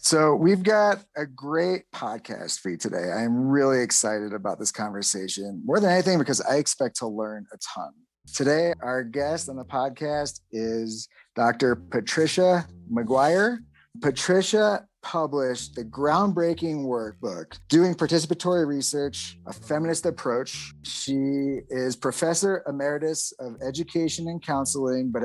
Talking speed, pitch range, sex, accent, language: 130 wpm, 115-155 Hz, male, American, English